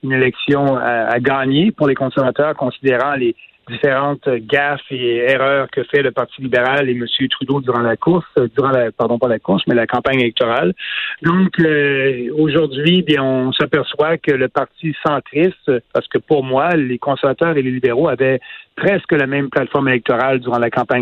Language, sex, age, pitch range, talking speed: French, male, 40-59, 130-150 Hz, 185 wpm